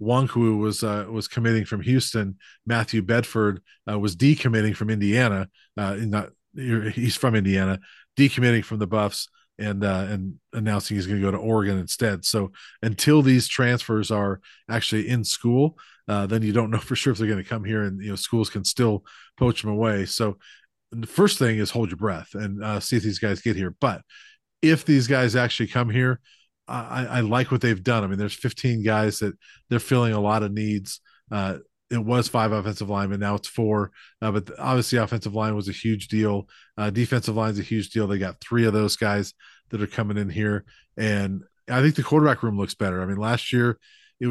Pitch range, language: 105-120 Hz, English